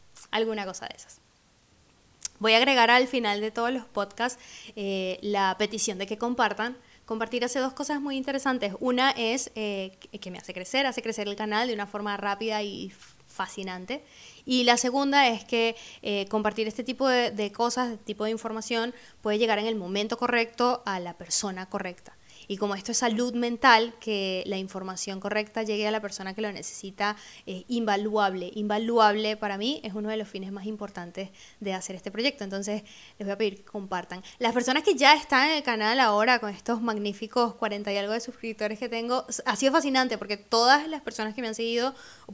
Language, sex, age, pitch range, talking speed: Spanish, female, 20-39, 200-240 Hz, 195 wpm